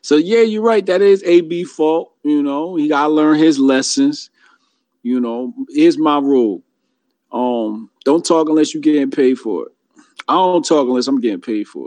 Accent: American